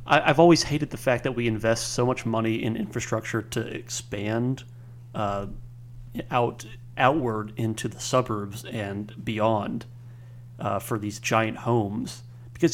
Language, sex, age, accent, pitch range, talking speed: English, male, 30-49, American, 115-125 Hz, 135 wpm